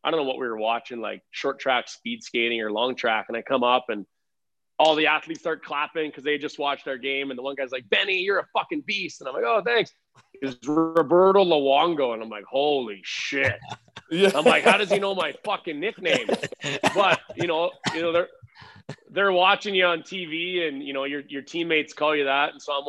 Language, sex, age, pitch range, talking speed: English, male, 30-49, 120-155 Hz, 225 wpm